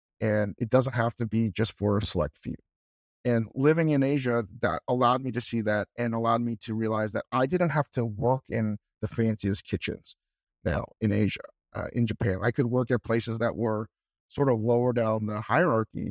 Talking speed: 205 wpm